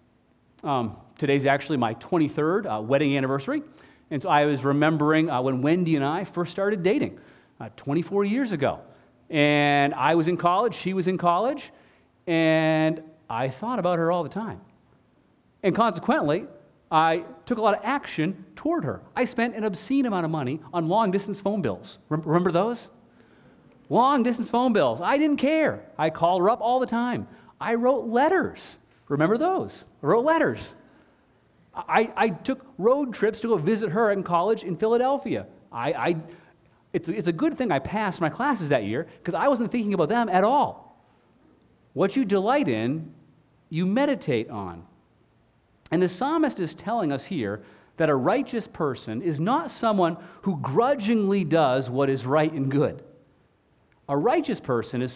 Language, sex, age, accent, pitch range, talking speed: English, male, 40-59, American, 140-230 Hz, 165 wpm